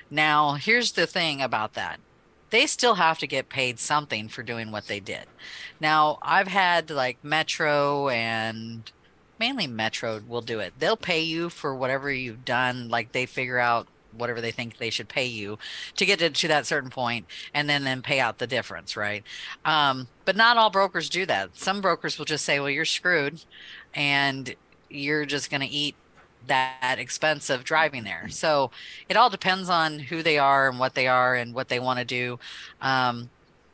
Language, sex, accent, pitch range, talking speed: English, female, American, 125-160 Hz, 190 wpm